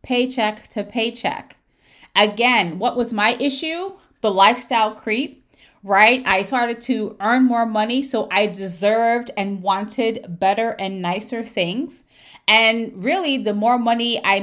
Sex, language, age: female, English, 30-49